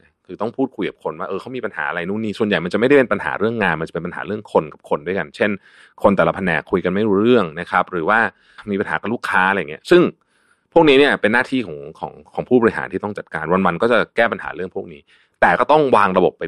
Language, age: Thai, 30-49